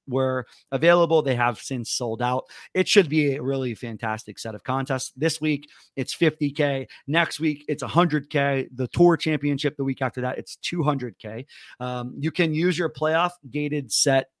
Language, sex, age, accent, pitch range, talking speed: English, male, 30-49, American, 135-155 Hz, 170 wpm